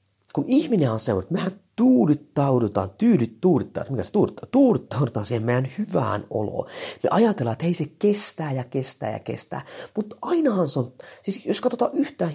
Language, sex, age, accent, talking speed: Finnish, male, 30-49, native, 165 wpm